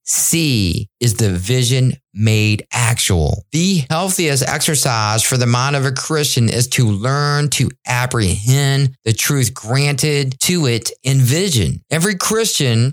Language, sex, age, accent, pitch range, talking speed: English, male, 40-59, American, 125-160 Hz, 135 wpm